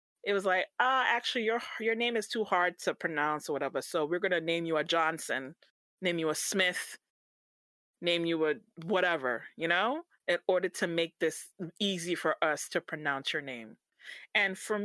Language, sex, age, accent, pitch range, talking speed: English, female, 30-49, American, 175-260 Hz, 185 wpm